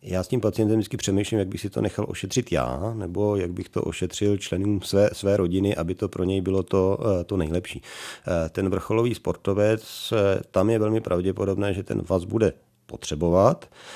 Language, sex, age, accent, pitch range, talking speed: Czech, male, 40-59, native, 90-100 Hz, 180 wpm